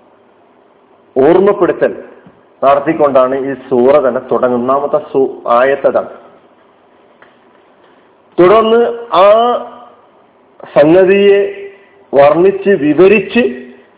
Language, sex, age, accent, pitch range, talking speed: Malayalam, male, 40-59, native, 155-200 Hz, 50 wpm